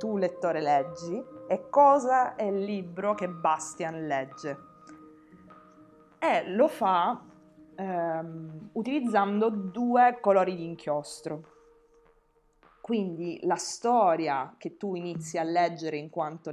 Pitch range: 155-185 Hz